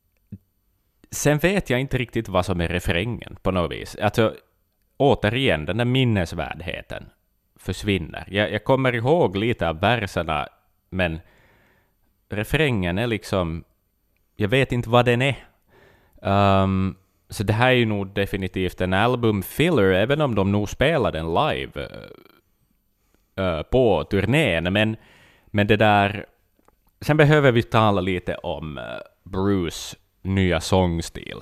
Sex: male